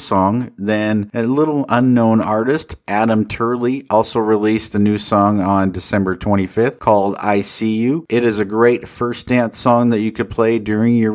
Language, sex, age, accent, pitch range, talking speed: English, male, 50-69, American, 100-120 Hz, 180 wpm